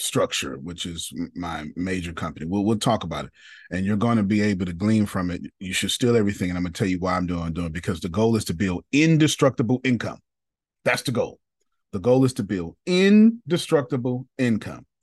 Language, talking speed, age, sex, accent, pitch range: English, 210 wpm, 30-49, male, American, 85-110 Hz